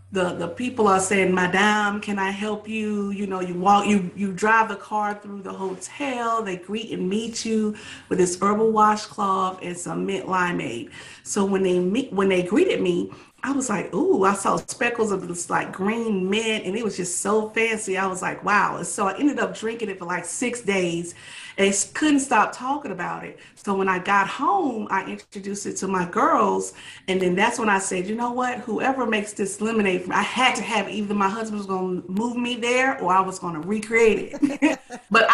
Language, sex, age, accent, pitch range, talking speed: English, female, 40-59, American, 190-230 Hz, 210 wpm